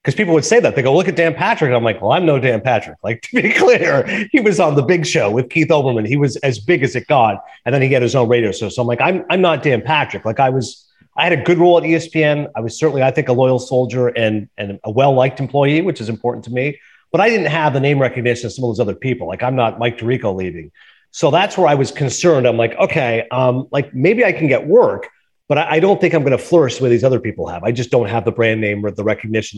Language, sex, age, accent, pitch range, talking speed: English, male, 30-49, American, 120-160 Hz, 285 wpm